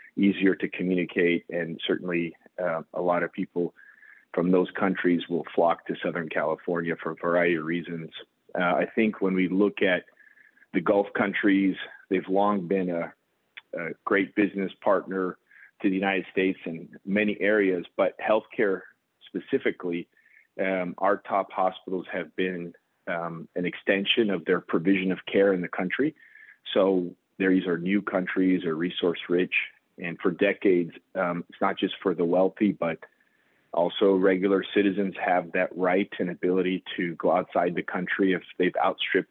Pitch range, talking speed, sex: 85-95 Hz, 155 wpm, male